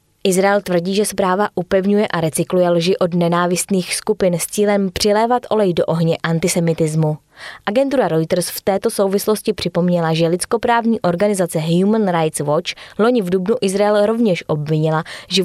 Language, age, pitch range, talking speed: Czech, 20-39, 165-210 Hz, 145 wpm